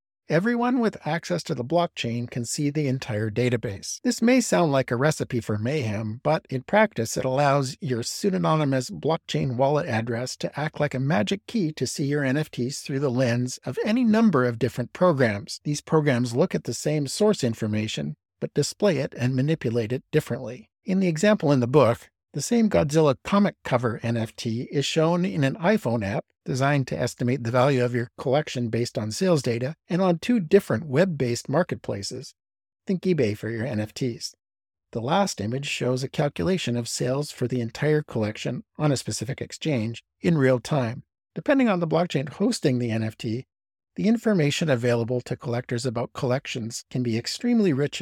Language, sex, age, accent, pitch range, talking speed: English, male, 50-69, American, 120-160 Hz, 175 wpm